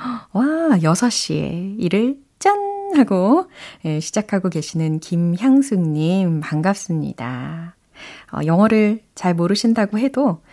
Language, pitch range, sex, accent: Korean, 165-245 Hz, female, native